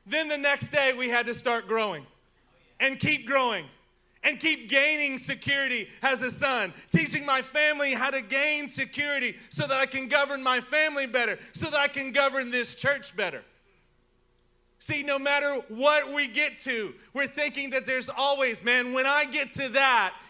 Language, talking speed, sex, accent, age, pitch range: English, 175 wpm, male, American, 30-49, 240-280 Hz